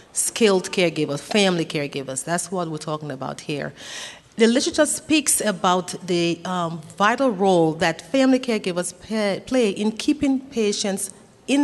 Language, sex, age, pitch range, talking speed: English, female, 40-59, 165-225 Hz, 135 wpm